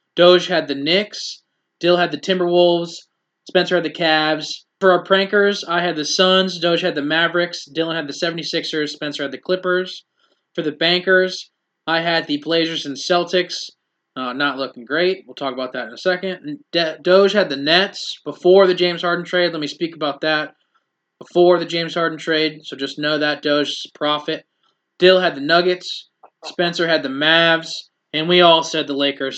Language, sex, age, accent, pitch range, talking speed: English, male, 20-39, American, 150-185 Hz, 180 wpm